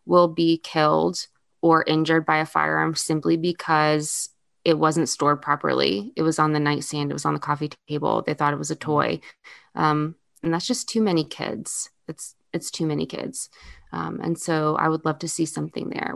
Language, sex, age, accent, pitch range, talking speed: English, female, 20-39, American, 150-165 Hz, 195 wpm